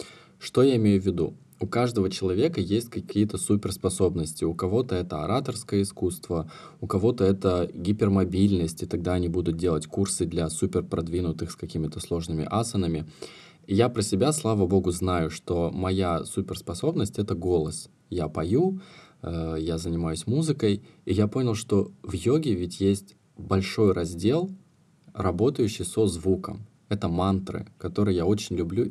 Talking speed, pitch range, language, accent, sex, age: 140 wpm, 90-105 Hz, Russian, native, male, 20-39